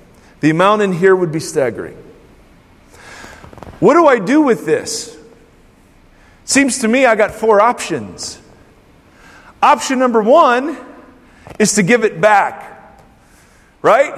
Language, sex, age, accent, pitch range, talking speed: English, male, 40-59, American, 185-300 Hz, 125 wpm